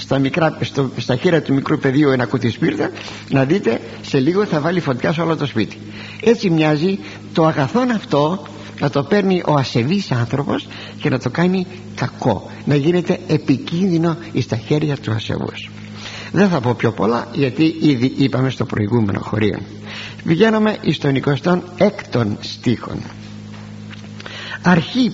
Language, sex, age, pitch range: Greek, male, 50-69, 105-175 Hz